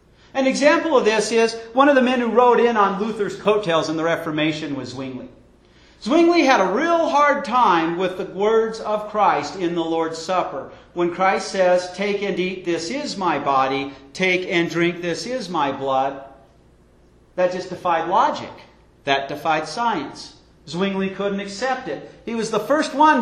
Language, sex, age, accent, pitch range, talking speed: English, male, 50-69, American, 150-215 Hz, 175 wpm